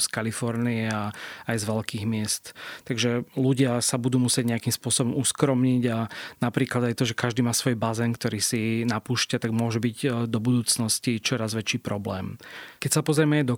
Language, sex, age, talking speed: Slovak, male, 30-49, 175 wpm